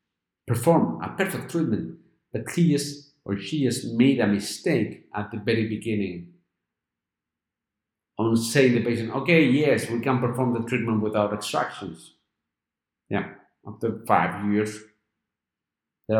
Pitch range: 110-150 Hz